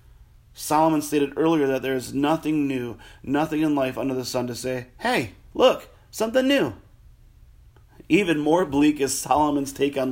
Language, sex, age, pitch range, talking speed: English, male, 30-49, 120-150 Hz, 160 wpm